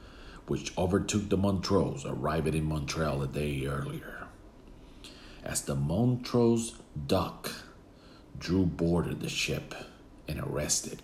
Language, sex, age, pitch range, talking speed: English, male, 50-69, 80-105 Hz, 110 wpm